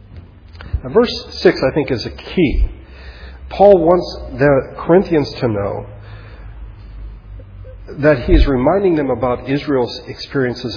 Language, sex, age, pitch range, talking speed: English, male, 40-59, 105-140 Hz, 115 wpm